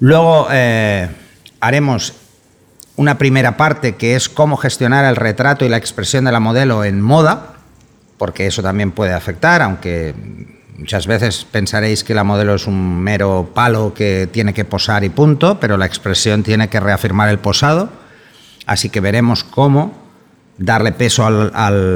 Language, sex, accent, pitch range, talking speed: Spanish, male, Spanish, 100-125 Hz, 155 wpm